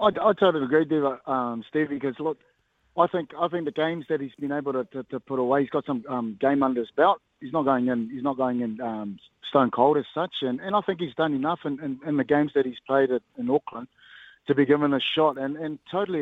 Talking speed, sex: 260 wpm, male